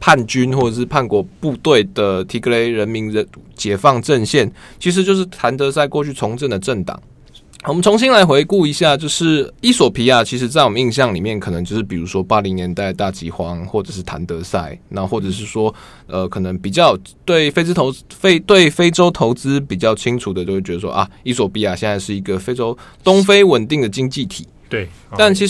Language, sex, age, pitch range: Chinese, male, 20-39, 105-150 Hz